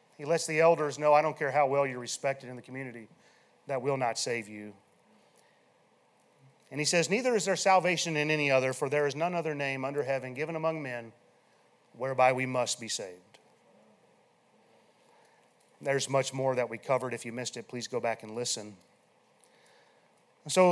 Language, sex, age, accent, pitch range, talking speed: English, male, 40-59, American, 135-170 Hz, 180 wpm